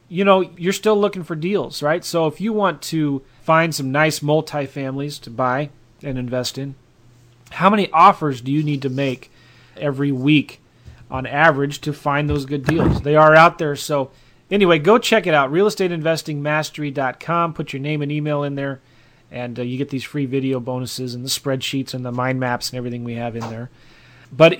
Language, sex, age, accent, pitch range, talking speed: English, male, 30-49, American, 130-165 Hz, 195 wpm